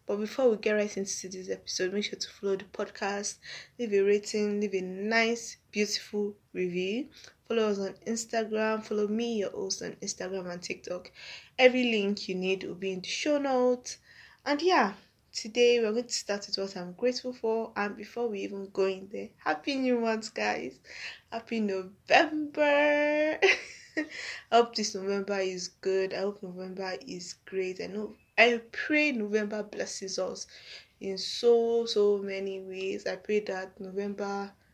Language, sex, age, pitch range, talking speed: English, female, 10-29, 190-230 Hz, 165 wpm